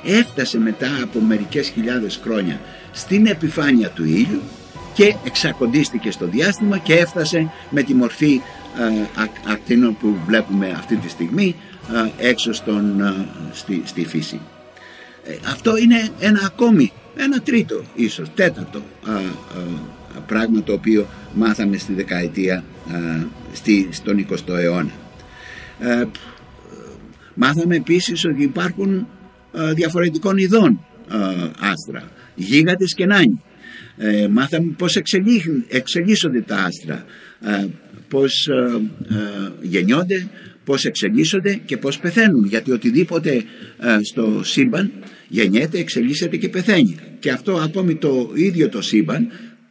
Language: Greek